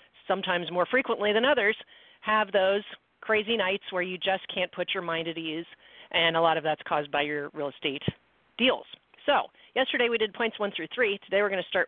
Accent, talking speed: American, 210 wpm